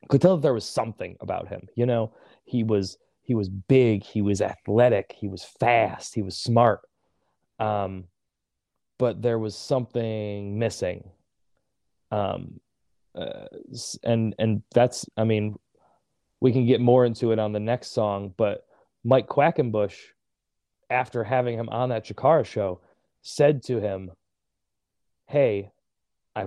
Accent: American